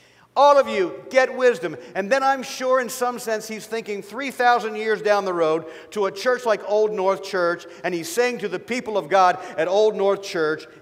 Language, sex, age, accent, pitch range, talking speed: English, male, 50-69, American, 145-195 Hz, 210 wpm